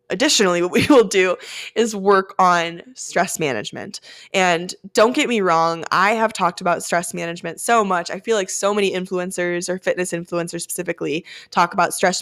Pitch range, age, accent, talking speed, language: 170-210 Hz, 20-39, American, 175 wpm, English